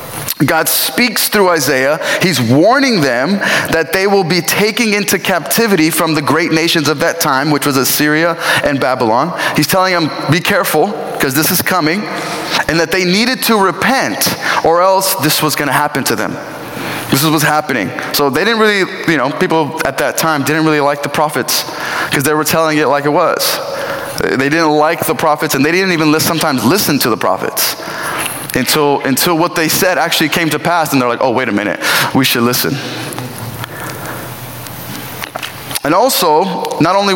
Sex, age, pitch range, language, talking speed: male, 20-39, 150-180 Hz, English, 185 wpm